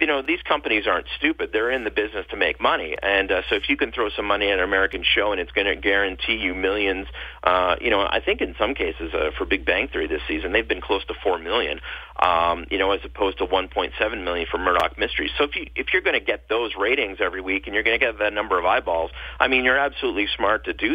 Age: 40-59